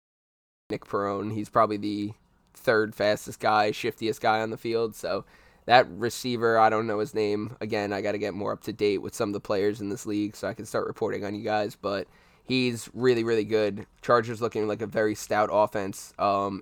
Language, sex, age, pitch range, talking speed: English, male, 10-29, 105-115 Hz, 215 wpm